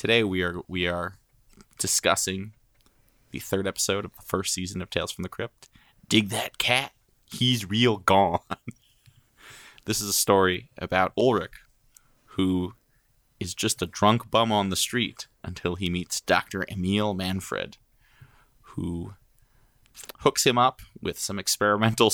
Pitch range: 95-120 Hz